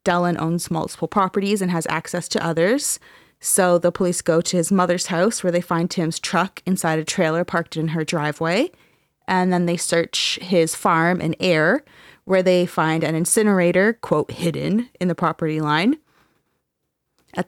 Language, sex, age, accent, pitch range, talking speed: English, female, 20-39, American, 165-190 Hz, 170 wpm